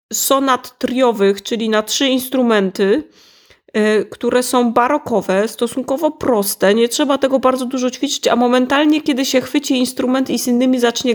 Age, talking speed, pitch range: 30-49, 145 wpm, 210-270 Hz